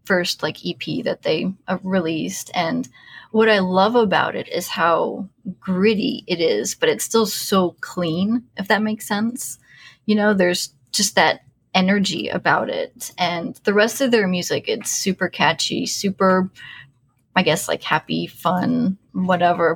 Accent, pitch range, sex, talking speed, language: American, 180-215 Hz, female, 155 wpm, English